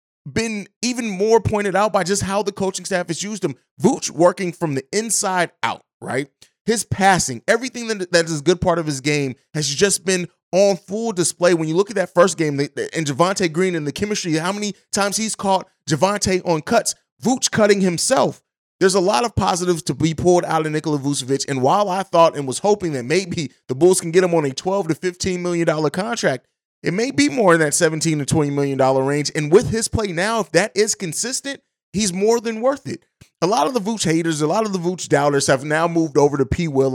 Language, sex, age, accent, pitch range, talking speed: English, male, 30-49, American, 150-195 Hz, 225 wpm